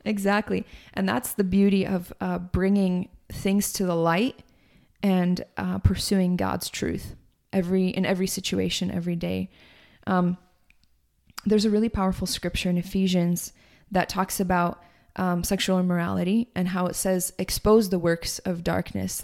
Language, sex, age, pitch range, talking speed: English, female, 20-39, 180-200 Hz, 145 wpm